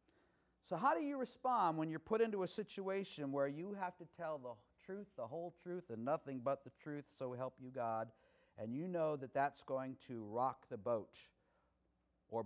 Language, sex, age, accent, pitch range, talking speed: English, male, 50-69, American, 120-175 Hz, 195 wpm